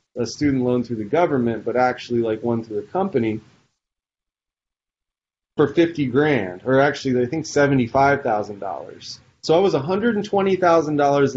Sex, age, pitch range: male, 30-49, 125-190 Hz